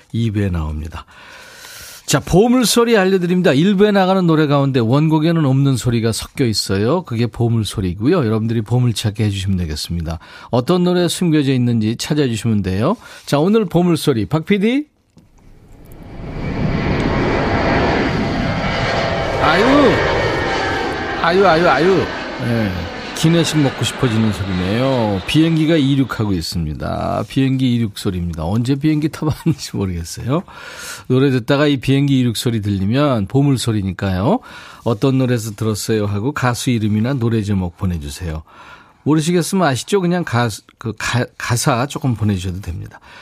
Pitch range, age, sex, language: 105-160 Hz, 40-59, male, Korean